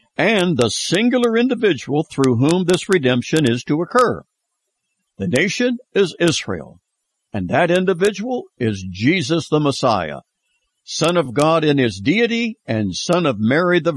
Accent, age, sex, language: American, 60-79, male, English